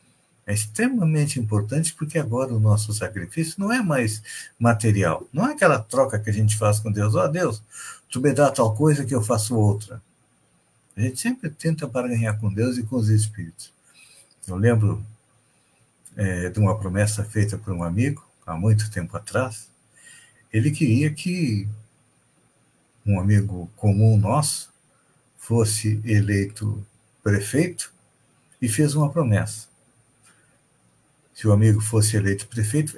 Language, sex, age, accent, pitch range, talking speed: Portuguese, male, 60-79, Brazilian, 105-135 Hz, 145 wpm